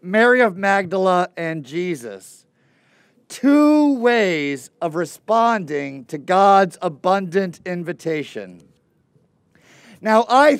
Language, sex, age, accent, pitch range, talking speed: English, male, 40-59, American, 160-220 Hz, 85 wpm